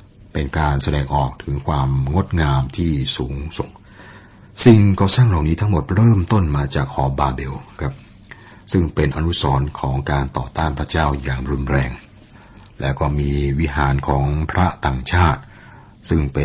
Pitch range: 70-90 Hz